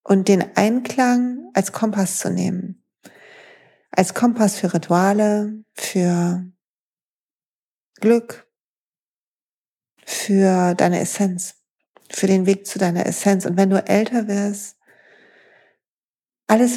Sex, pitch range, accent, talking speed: female, 180-215 Hz, German, 100 wpm